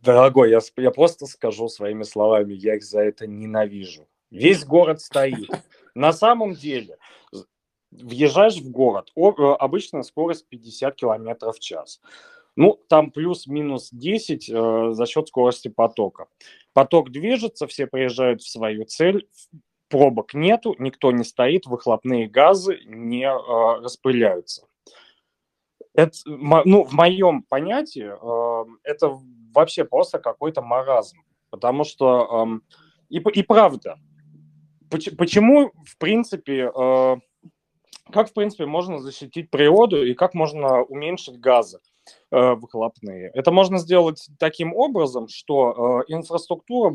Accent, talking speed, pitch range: native, 120 wpm, 125-175 Hz